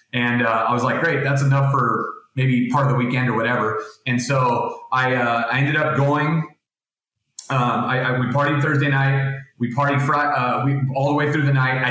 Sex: male